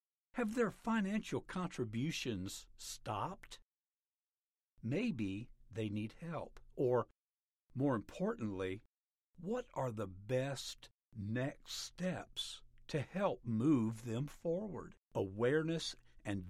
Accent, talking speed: American, 90 wpm